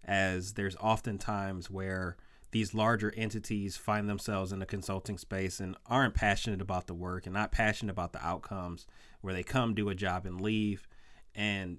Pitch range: 95-110 Hz